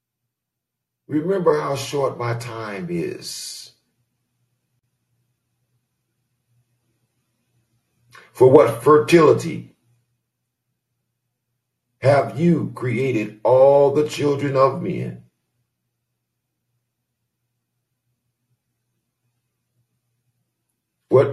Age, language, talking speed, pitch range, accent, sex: 60-79, English, 50 wpm, 120-125 Hz, American, male